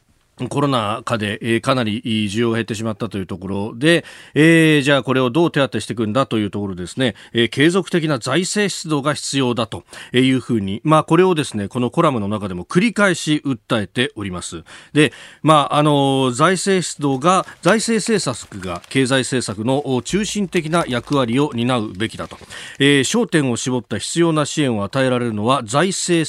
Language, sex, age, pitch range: Japanese, male, 40-59, 120-170 Hz